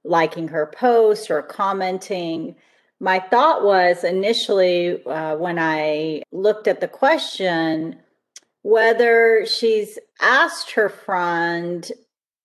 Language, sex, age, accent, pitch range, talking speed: English, female, 40-59, American, 165-220 Hz, 100 wpm